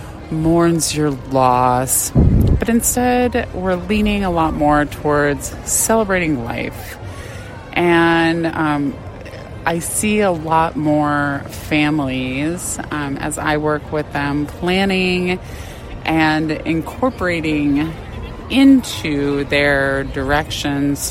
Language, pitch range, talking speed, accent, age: English, 130-165 Hz, 95 wpm, American, 20-39